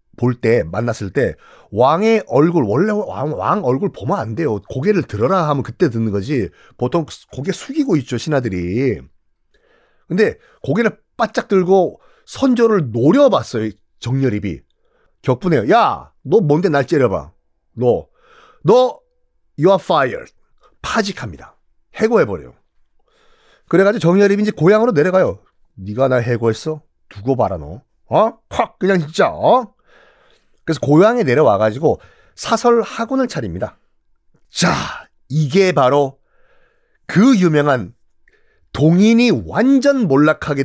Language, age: Korean, 40-59